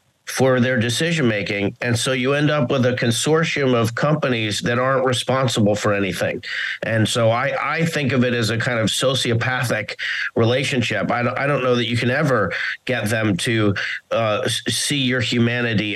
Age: 40-59